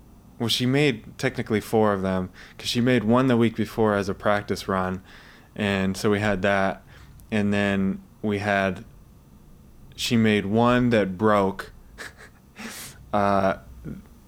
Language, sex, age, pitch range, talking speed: English, male, 20-39, 95-110 Hz, 140 wpm